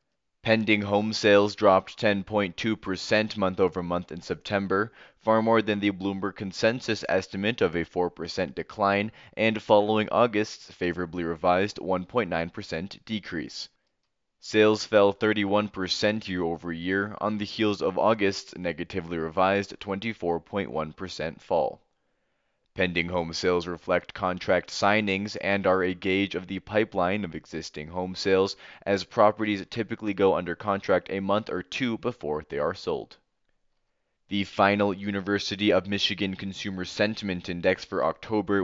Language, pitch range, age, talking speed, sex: English, 90-105 Hz, 20-39, 125 wpm, male